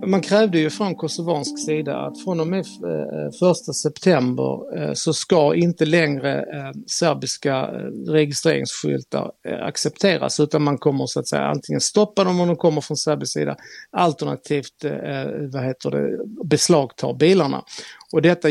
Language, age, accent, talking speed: Swedish, 50-69, native, 135 wpm